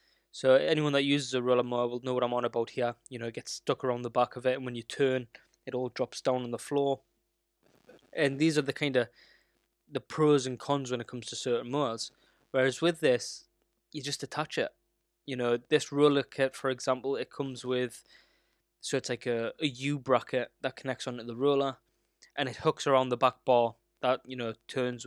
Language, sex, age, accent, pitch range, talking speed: English, male, 10-29, British, 125-145 Hz, 215 wpm